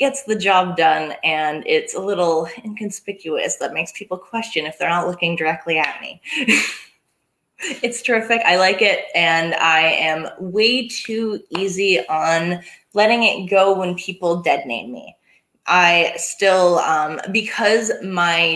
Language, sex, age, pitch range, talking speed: English, female, 20-39, 165-210 Hz, 145 wpm